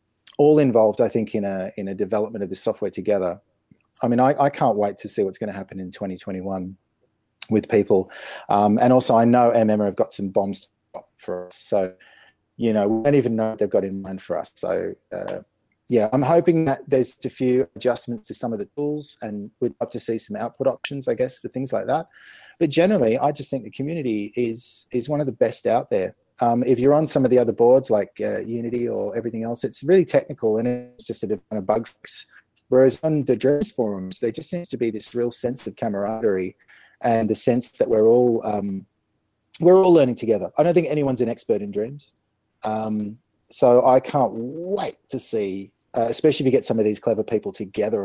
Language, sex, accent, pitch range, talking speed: English, male, Australian, 110-140 Hz, 225 wpm